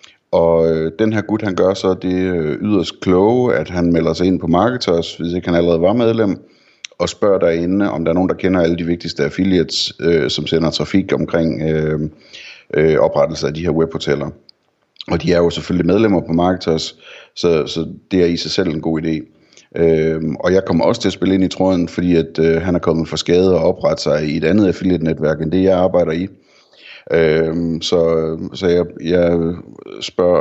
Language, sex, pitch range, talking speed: Danish, male, 80-90 Hz, 190 wpm